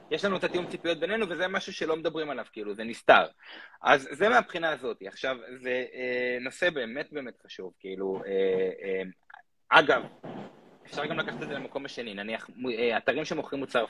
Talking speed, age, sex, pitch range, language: 180 wpm, 20-39, male, 135-205 Hz, Hebrew